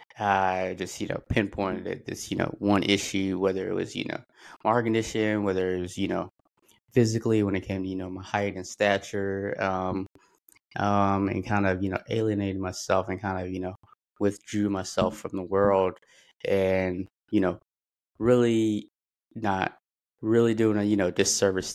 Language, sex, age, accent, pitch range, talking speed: English, male, 20-39, American, 90-105 Hz, 175 wpm